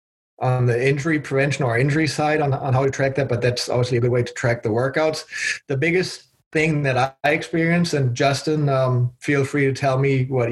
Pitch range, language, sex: 125-145 Hz, English, male